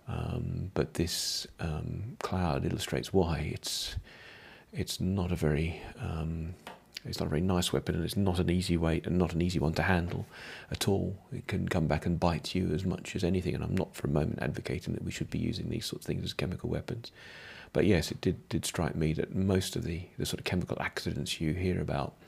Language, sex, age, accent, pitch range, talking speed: English, male, 40-59, British, 80-95 Hz, 225 wpm